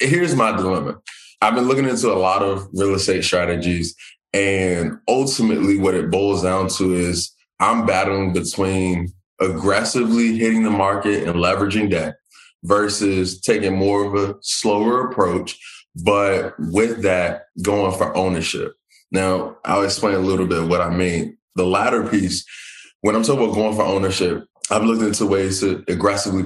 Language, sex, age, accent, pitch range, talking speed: English, male, 20-39, American, 90-105 Hz, 155 wpm